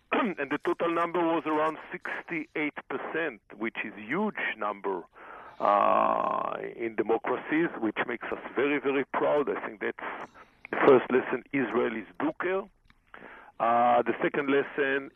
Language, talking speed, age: English, 140 wpm, 50-69